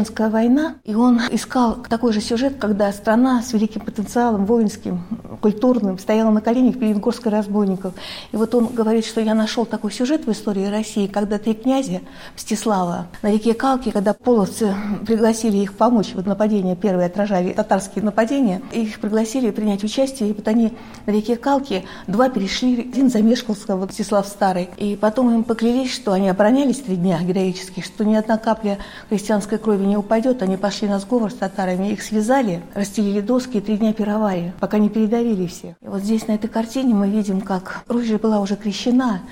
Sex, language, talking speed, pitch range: female, Russian, 180 wpm, 200-230 Hz